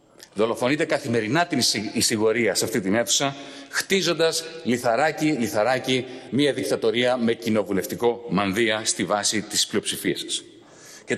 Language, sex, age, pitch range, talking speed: Greek, male, 40-59, 115-170 Hz, 120 wpm